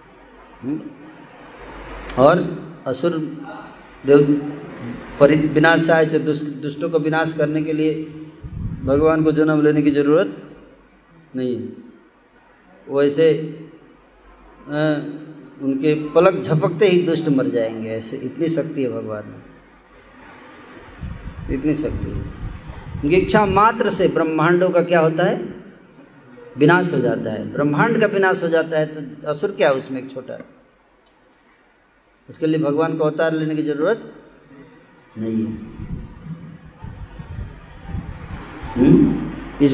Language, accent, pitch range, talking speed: Hindi, native, 135-170 Hz, 105 wpm